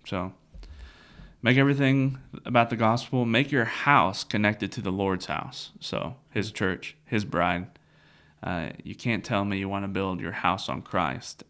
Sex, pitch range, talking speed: male, 95-115 Hz, 165 wpm